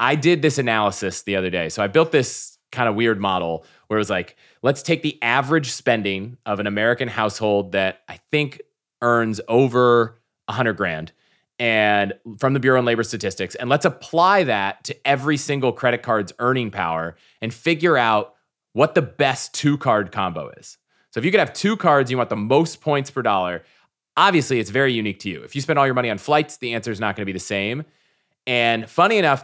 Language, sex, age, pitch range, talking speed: English, male, 30-49, 105-140 Hz, 210 wpm